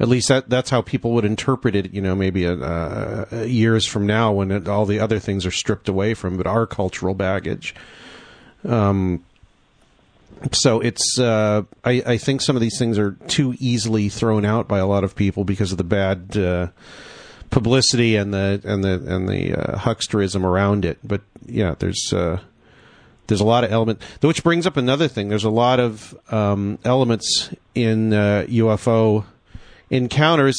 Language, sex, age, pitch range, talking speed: English, male, 40-59, 100-120 Hz, 180 wpm